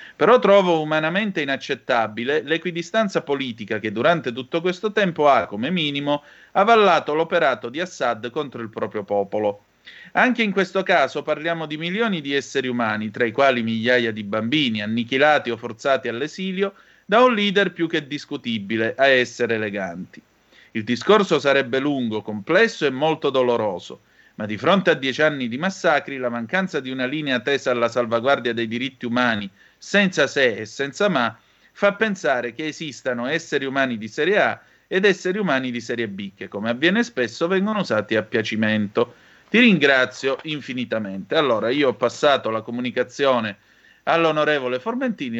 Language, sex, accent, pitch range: Italian, male, native, 120-180 Hz